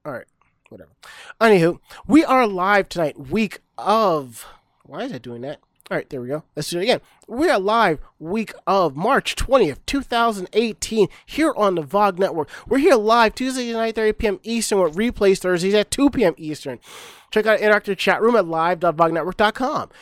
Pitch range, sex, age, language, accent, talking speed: 180-230 Hz, male, 30-49, English, American, 180 wpm